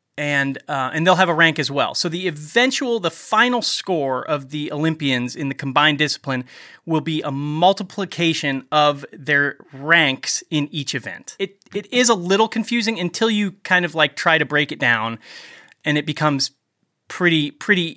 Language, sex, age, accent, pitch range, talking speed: English, male, 30-49, American, 140-195 Hz, 175 wpm